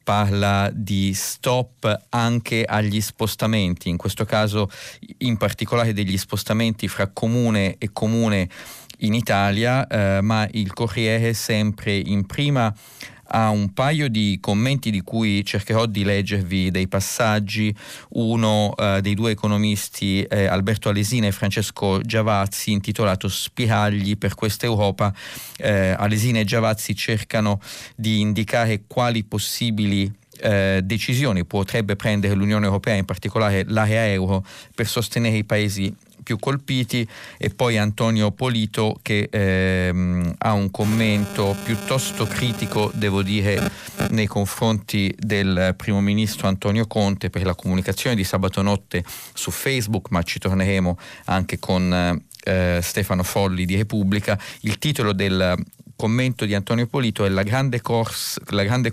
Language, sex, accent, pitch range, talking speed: Italian, male, native, 100-115 Hz, 130 wpm